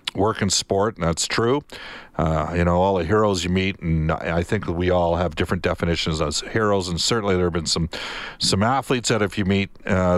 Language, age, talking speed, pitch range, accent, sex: English, 50-69, 220 wpm, 85-105 Hz, American, male